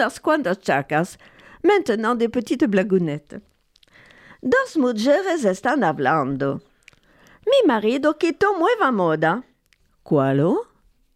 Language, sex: French, female